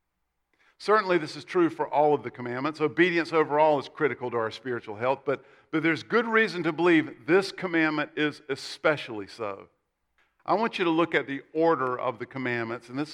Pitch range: 140-170 Hz